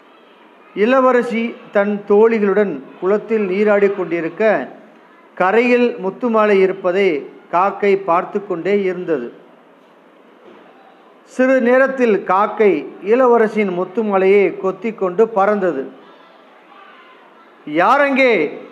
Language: Tamil